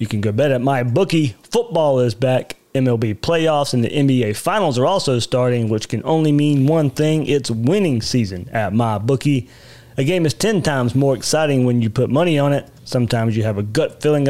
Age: 30-49